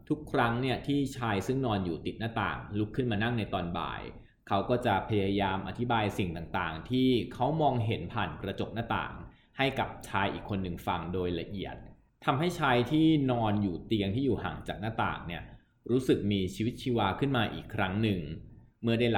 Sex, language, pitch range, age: male, Thai, 95-120 Hz, 20-39